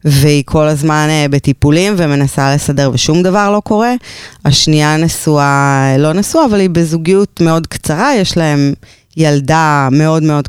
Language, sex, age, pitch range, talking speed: Hebrew, female, 20-39, 140-185 Hz, 135 wpm